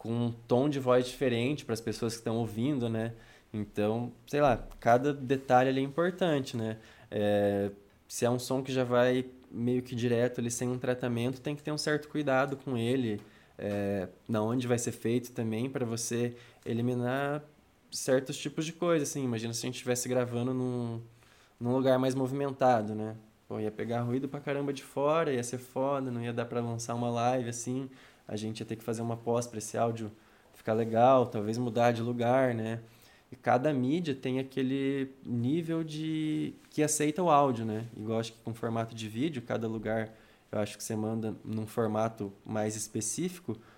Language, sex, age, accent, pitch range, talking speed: Portuguese, male, 20-39, Brazilian, 115-135 Hz, 190 wpm